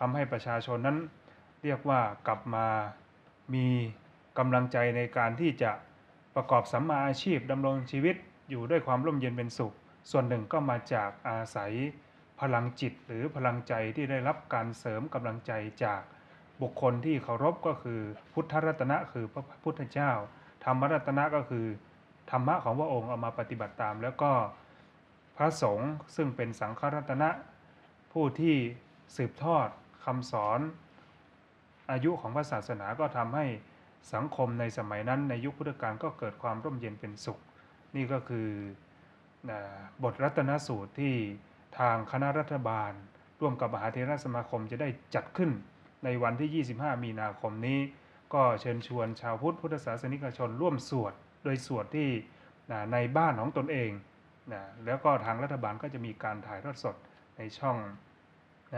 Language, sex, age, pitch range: Thai, male, 20-39, 115-145 Hz